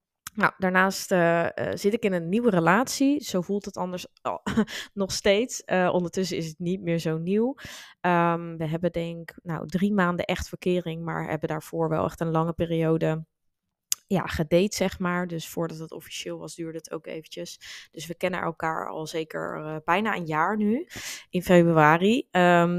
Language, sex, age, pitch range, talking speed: Dutch, female, 20-39, 165-185 Hz, 165 wpm